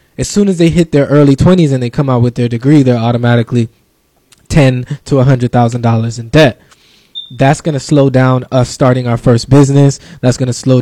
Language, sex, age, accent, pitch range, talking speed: English, male, 20-39, American, 120-145 Hz, 205 wpm